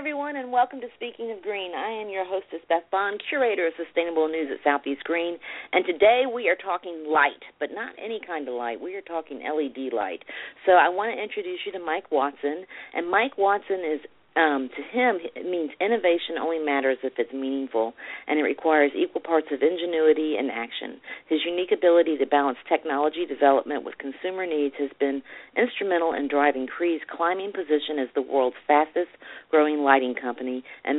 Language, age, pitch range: English, 40-59, 140-175 Hz